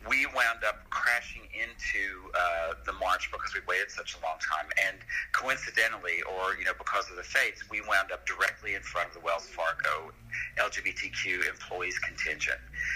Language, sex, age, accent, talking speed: English, male, 50-69, American, 170 wpm